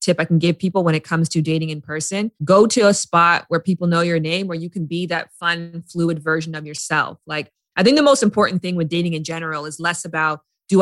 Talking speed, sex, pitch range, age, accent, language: 255 wpm, female, 165-195 Hz, 20-39, American, English